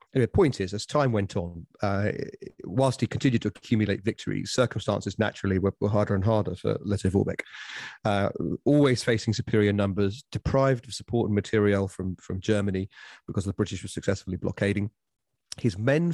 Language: English